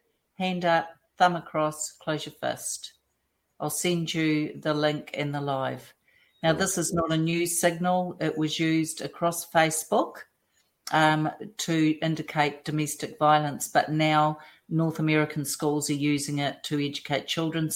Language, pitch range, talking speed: English, 150-170 Hz, 145 wpm